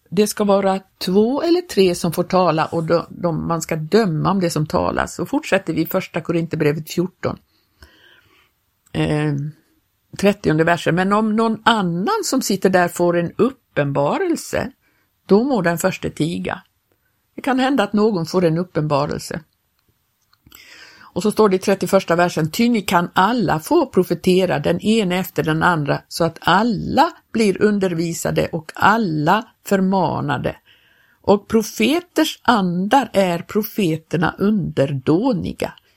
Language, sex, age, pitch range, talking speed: Swedish, female, 60-79, 165-215 Hz, 140 wpm